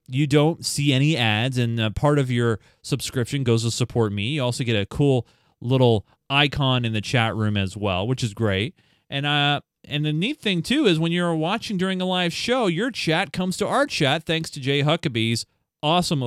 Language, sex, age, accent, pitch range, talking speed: English, male, 30-49, American, 110-145 Hz, 210 wpm